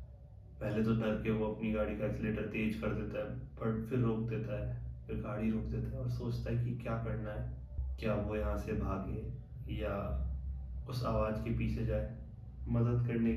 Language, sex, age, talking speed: Hindi, male, 20-39, 195 wpm